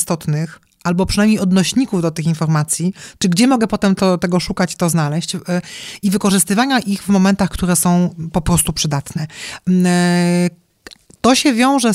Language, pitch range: Polish, 175-205 Hz